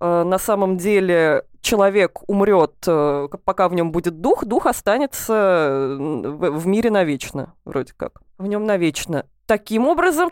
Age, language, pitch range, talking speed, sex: 20-39, Russian, 175-230 Hz, 130 wpm, female